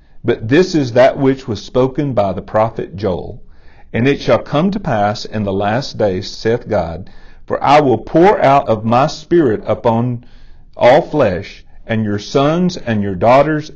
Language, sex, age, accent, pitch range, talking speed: English, male, 50-69, American, 95-135 Hz, 175 wpm